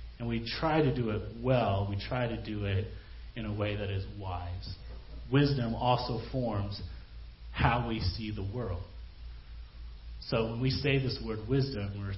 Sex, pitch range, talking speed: male, 100-125 Hz, 170 wpm